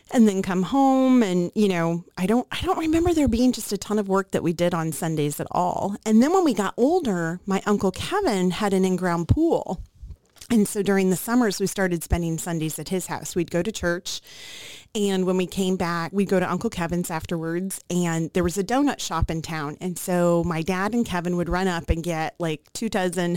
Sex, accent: female, American